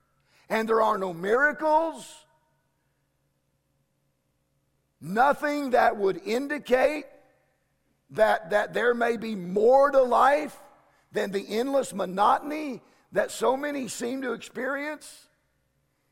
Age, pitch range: 50-69, 205-280 Hz